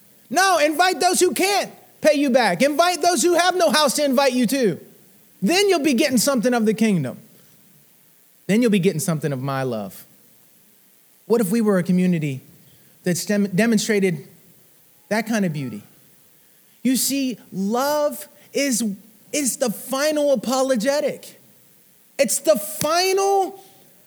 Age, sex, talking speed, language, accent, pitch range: 30-49, male, 145 wpm, English, American, 180-265 Hz